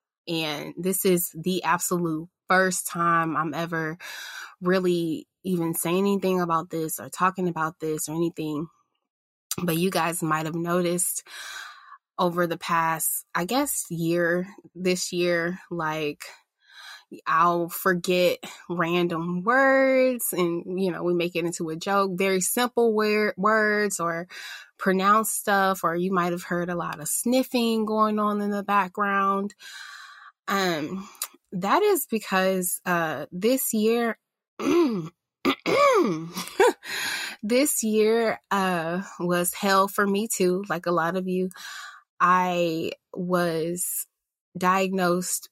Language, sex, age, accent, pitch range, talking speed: English, female, 20-39, American, 170-200 Hz, 120 wpm